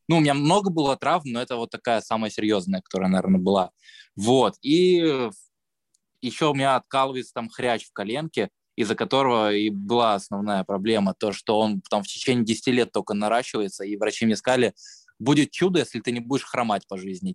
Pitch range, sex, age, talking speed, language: 105-135 Hz, male, 20-39, 185 wpm, Russian